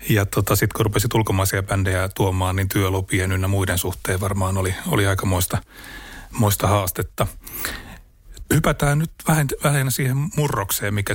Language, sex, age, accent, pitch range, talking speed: Finnish, male, 30-49, native, 100-120 Hz, 145 wpm